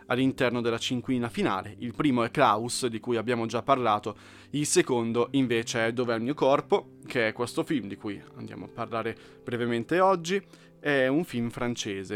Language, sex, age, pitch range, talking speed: Italian, male, 20-39, 110-130 Hz, 180 wpm